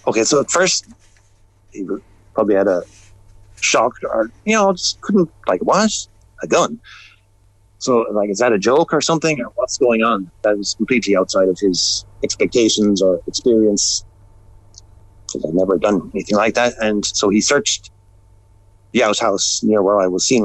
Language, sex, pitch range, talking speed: English, male, 100-105 Hz, 165 wpm